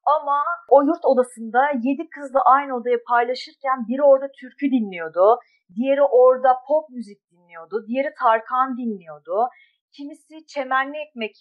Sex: female